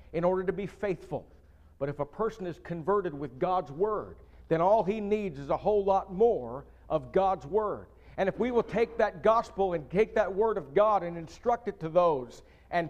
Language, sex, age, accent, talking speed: English, male, 50-69, American, 210 wpm